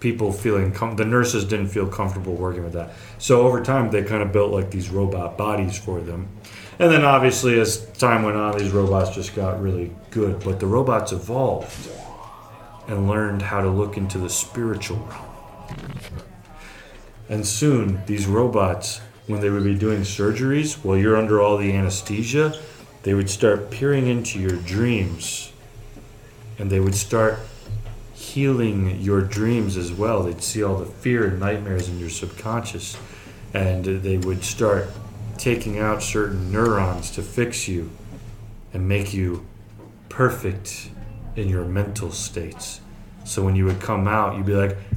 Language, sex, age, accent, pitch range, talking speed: English, male, 30-49, American, 95-110 Hz, 160 wpm